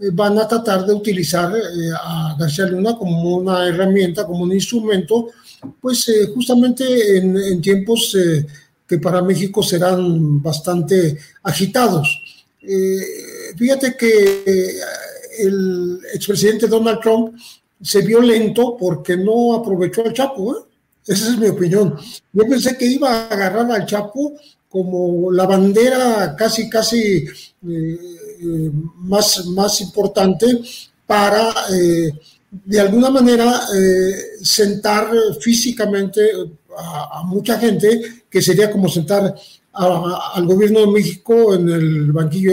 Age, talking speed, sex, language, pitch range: 40-59, 120 wpm, male, Spanish, 180-225 Hz